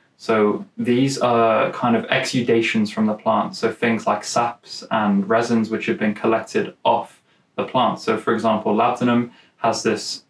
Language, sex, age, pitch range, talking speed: English, male, 20-39, 110-130 Hz, 165 wpm